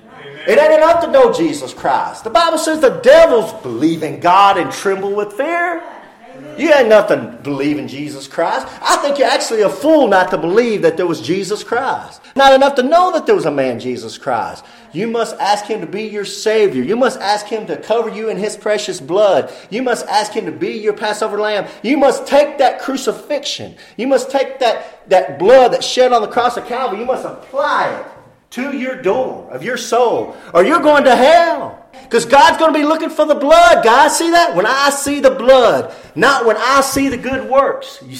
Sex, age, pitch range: male, 40-59, 205-280 Hz